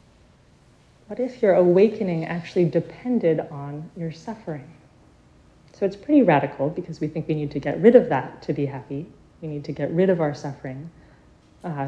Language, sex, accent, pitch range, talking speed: English, female, American, 155-190 Hz, 175 wpm